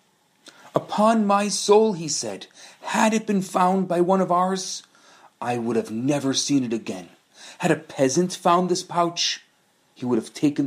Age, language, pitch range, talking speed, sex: 40-59, English, 130-180 Hz, 170 wpm, male